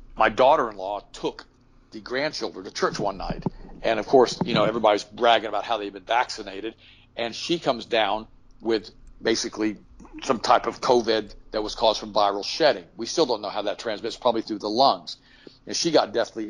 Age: 50-69